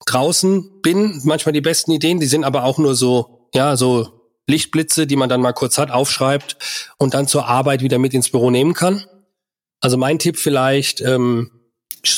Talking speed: 180 wpm